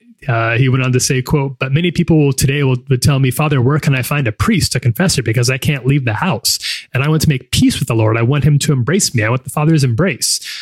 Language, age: English, 30-49